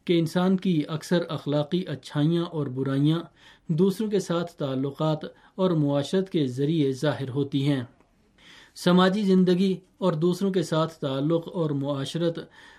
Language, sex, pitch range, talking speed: Urdu, male, 145-175 Hz, 130 wpm